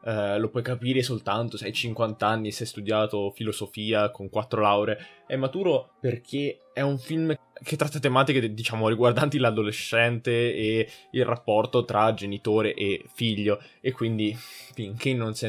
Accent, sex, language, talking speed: native, male, Italian, 155 wpm